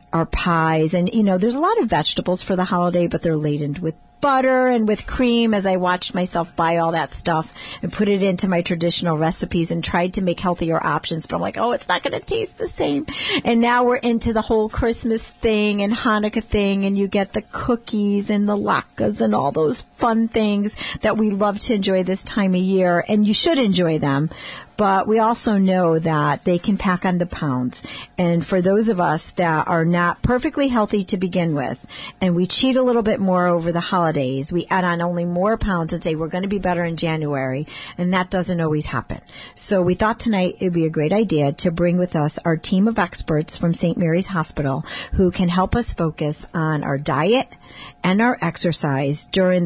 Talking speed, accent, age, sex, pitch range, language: 215 wpm, American, 40-59, female, 165-210 Hz, English